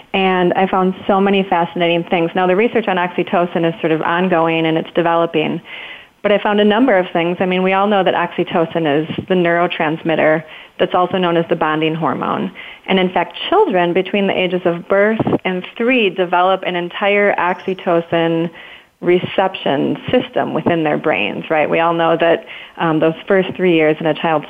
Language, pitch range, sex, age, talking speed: English, 170-195 Hz, female, 30-49, 185 wpm